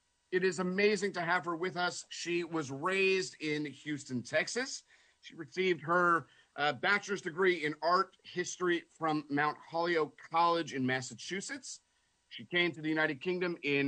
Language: English